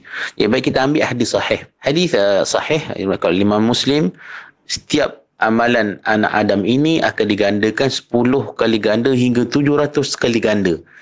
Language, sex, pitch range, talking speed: Malay, male, 100-135 Hz, 145 wpm